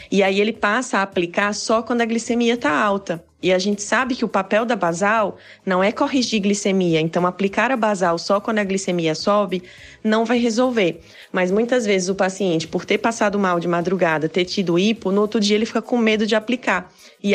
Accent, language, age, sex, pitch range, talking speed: Brazilian, Portuguese, 20-39, female, 180-215 Hz, 210 wpm